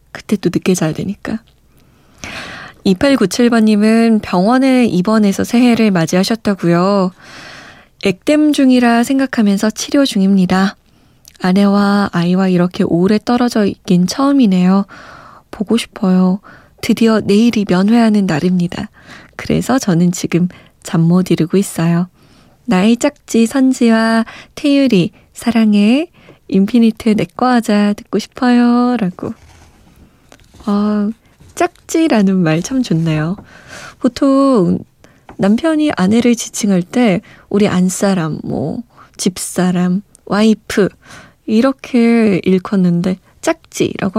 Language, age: Korean, 20-39